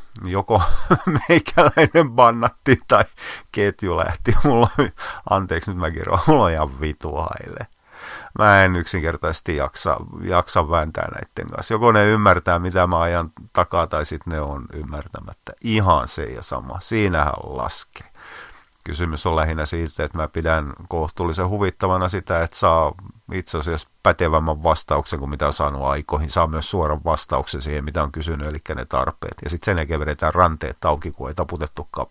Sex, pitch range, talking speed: male, 80-95 Hz, 155 wpm